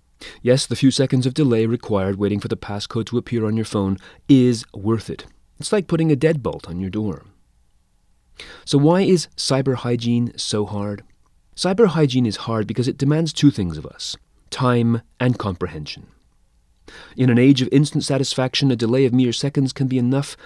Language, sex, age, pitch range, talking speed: English, male, 30-49, 95-135 Hz, 180 wpm